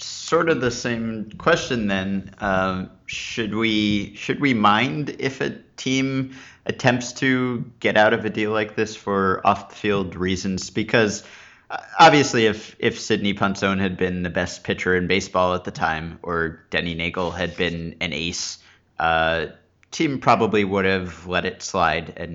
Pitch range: 90-120 Hz